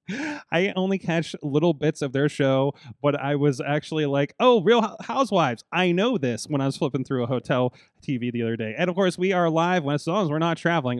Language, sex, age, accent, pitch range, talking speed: English, male, 30-49, American, 130-185 Hz, 235 wpm